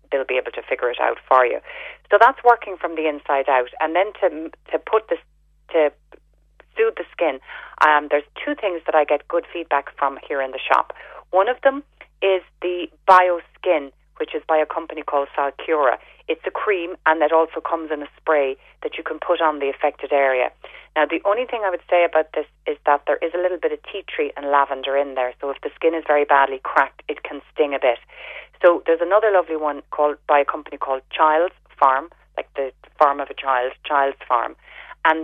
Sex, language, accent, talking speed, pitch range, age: female, English, Irish, 220 wpm, 145-180 Hz, 30-49